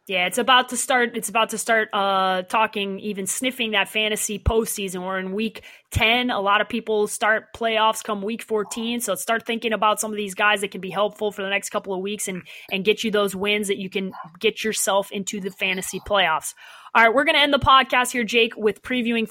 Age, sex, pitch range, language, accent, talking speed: 20-39, female, 200-245 Hz, English, American, 225 wpm